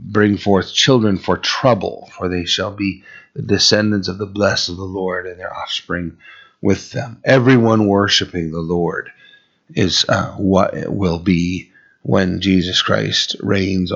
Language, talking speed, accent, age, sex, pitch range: English, 155 wpm, American, 30-49, male, 90-105 Hz